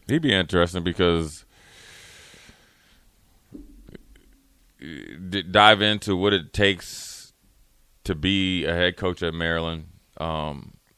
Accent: American